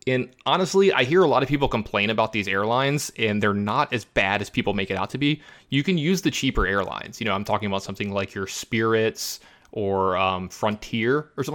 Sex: male